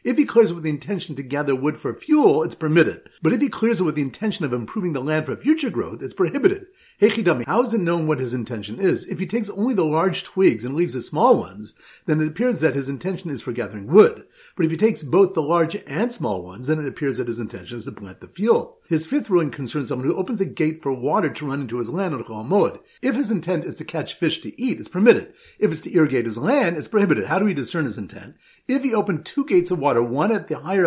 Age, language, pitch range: 50-69, English, 140-215 Hz